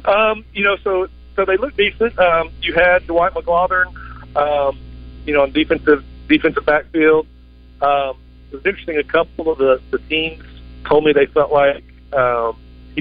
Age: 40-59